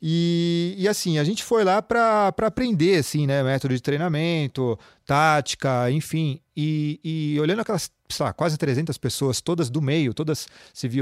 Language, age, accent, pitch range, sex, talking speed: Portuguese, 30-49, Brazilian, 125-175 Hz, male, 170 wpm